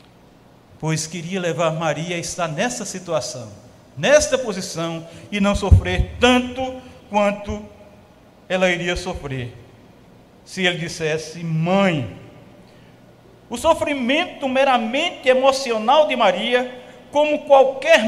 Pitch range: 180-295 Hz